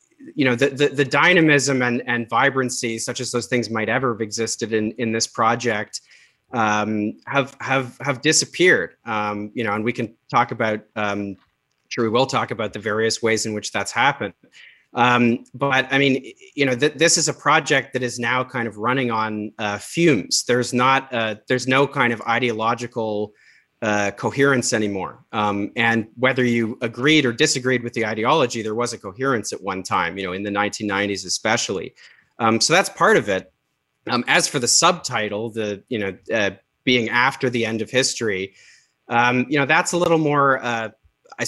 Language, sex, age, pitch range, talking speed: English, male, 30-49, 110-130 Hz, 190 wpm